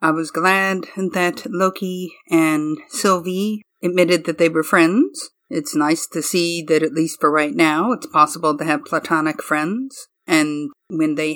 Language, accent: English, American